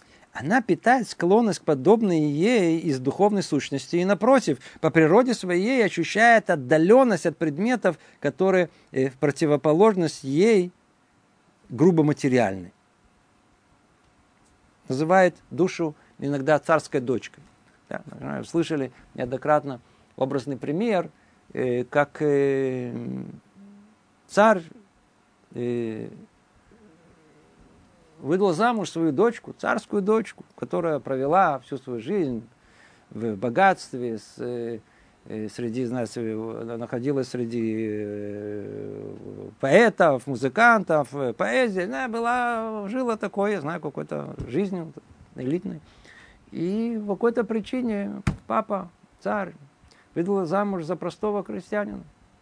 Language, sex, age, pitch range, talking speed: Russian, male, 50-69, 130-205 Hz, 85 wpm